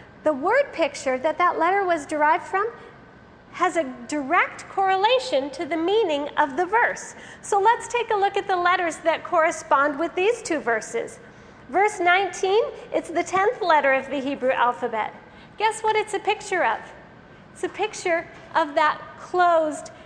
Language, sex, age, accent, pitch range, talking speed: English, female, 40-59, American, 290-365 Hz, 165 wpm